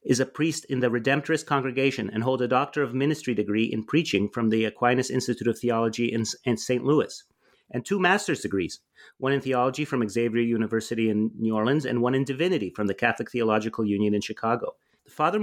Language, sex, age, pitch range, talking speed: English, male, 30-49, 120-140 Hz, 195 wpm